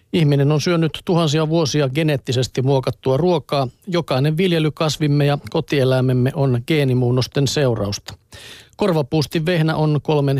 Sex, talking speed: male, 110 wpm